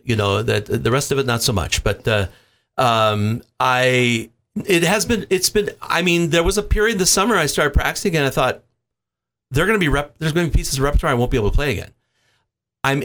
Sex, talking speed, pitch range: male, 245 wpm, 105-135 Hz